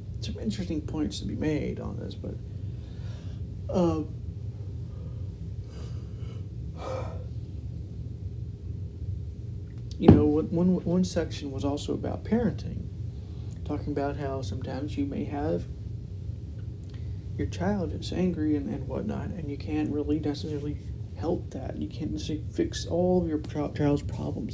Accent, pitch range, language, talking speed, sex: American, 100-140 Hz, English, 120 wpm, male